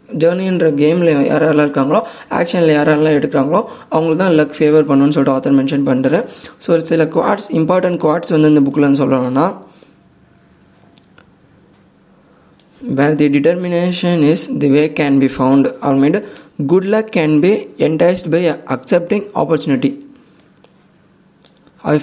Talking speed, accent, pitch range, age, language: 110 wpm, Indian, 145-175 Hz, 20-39, English